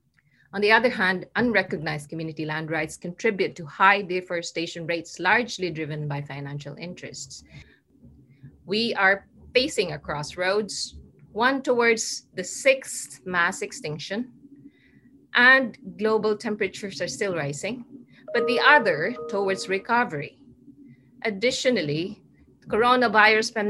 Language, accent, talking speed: English, Filipino, 110 wpm